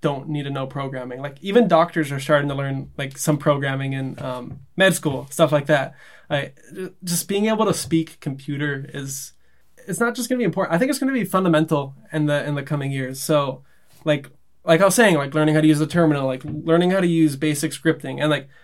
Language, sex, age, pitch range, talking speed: English, male, 20-39, 145-175 Hz, 230 wpm